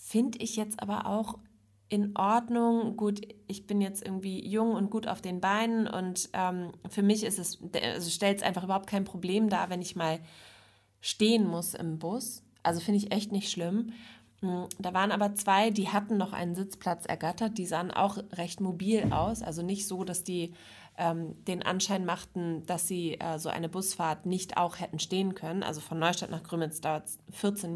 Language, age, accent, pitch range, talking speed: German, 20-39, German, 170-220 Hz, 190 wpm